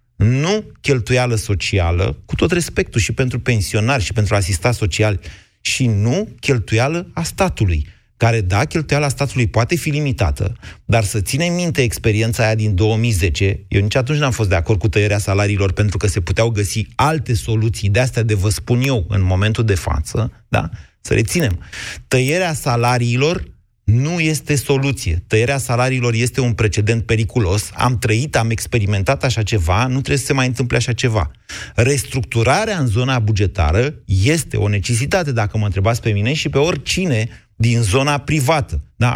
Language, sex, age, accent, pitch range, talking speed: Romanian, male, 30-49, native, 105-135 Hz, 165 wpm